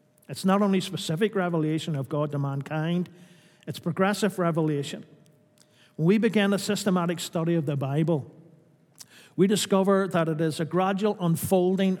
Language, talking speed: English, 145 wpm